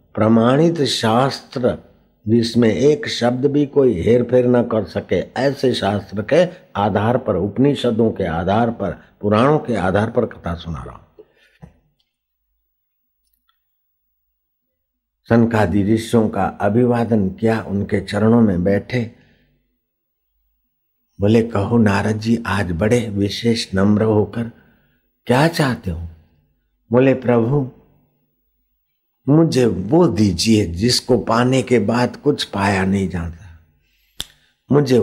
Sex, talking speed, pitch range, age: male, 105 wpm, 95-125 Hz, 60-79